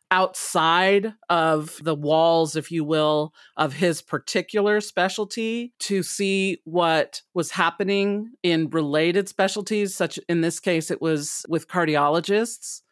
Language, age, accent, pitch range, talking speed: English, 40-59, American, 165-205 Hz, 125 wpm